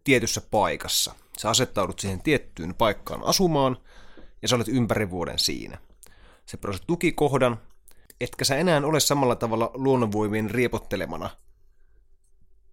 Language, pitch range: Finnish, 95-130 Hz